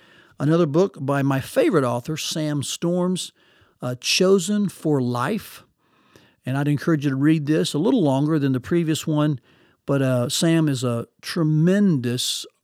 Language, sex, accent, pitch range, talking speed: English, male, American, 135-170 Hz, 150 wpm